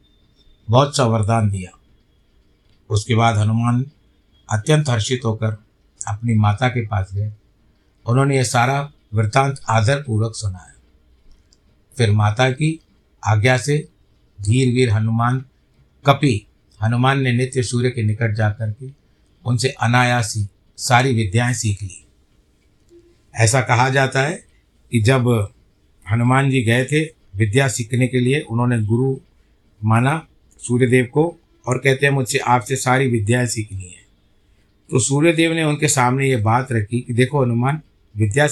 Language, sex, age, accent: Hindi, male, 50-69, native